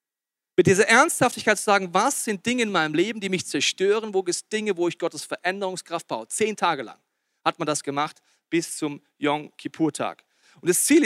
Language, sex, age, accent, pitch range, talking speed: German, male, 40-59, German, 150-195 Hz, 200 wpm